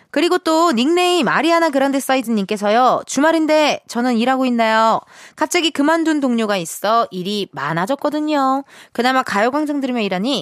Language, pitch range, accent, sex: Korean, 195-310 Hz, native, female